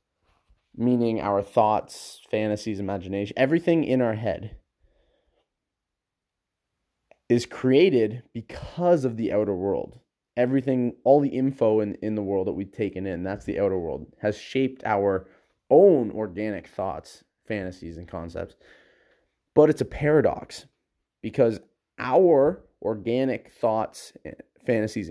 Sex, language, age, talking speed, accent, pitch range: male, English, 30-49, 120 wpm, American, 100-130 Hz